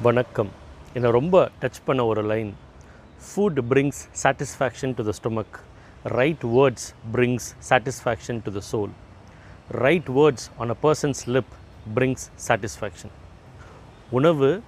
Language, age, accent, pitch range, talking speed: Tamil, 30-49, native, 110-150 Hz, 120 wpm